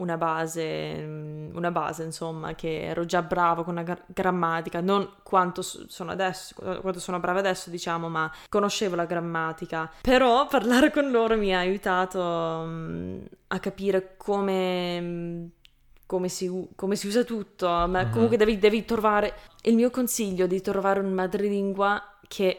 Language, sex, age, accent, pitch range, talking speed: Italian, female, 20-39, native, 170-195 Hz, 155 wpm